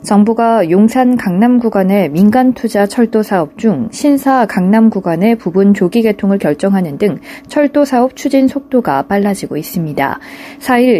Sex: female